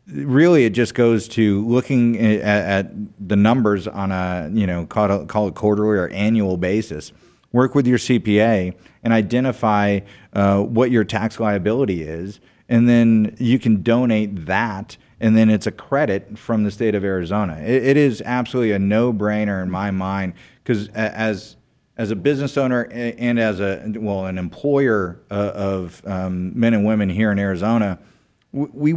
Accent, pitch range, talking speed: American, 100-120 Hz, 165 wpm